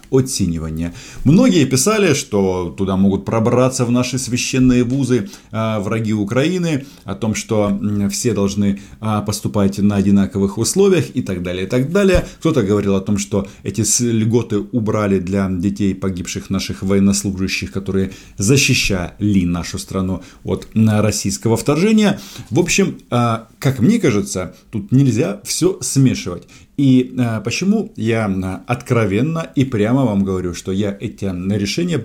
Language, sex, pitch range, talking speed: Russian, male, 100-130 Hz, 140 wpm